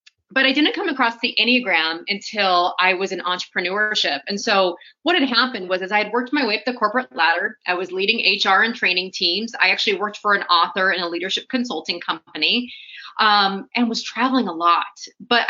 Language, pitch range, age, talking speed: English, 185-250 Hz, 30-49, 205 wpm